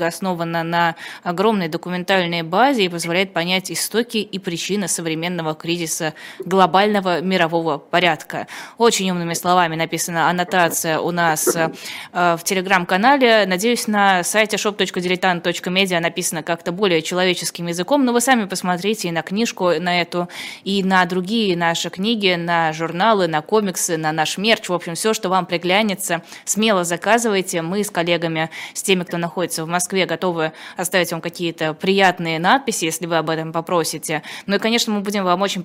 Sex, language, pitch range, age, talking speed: female, Russian, 170-200 Hz, 20-39, 155 wpm